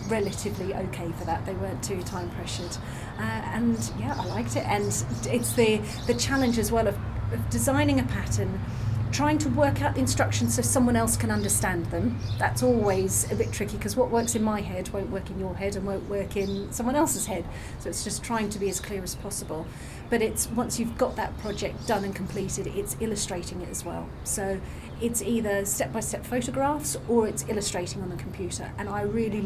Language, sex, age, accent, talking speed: English, female, 40-59, British, 205 wpm